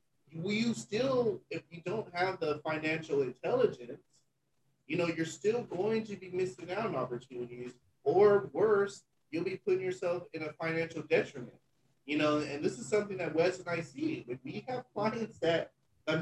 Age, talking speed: 30-49, 180 wpm